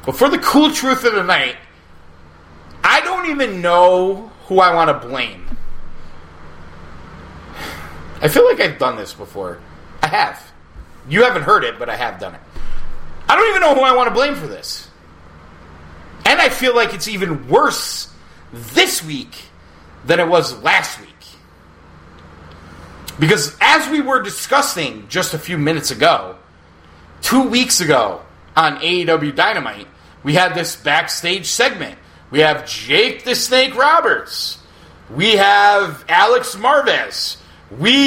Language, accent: English, American